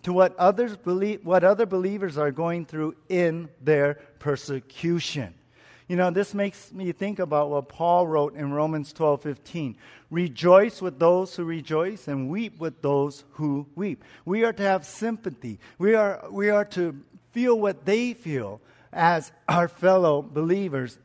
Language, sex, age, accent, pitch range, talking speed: English, male, 50-69, American, 145-180 Hz, 160 wpm